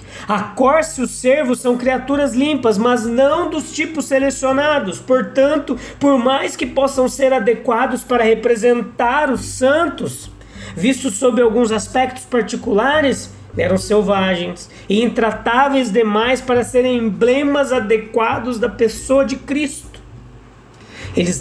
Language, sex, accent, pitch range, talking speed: Portuguese, male, Brazilian, 205-255 Hz, 120 wpm